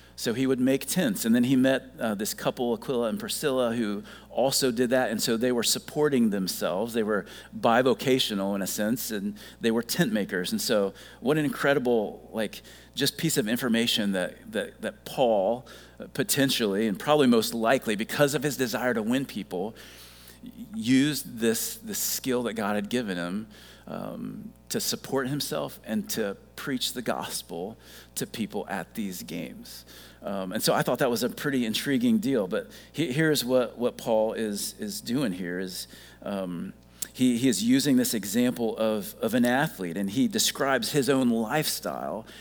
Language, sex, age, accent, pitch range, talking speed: English, male, 40-59, American, 105-150 Hz, 175 wpm